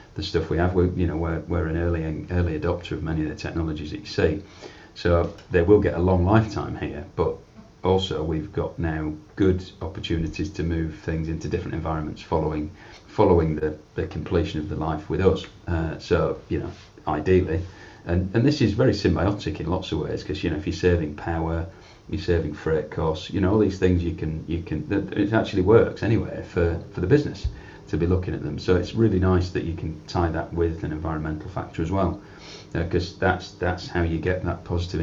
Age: 40-59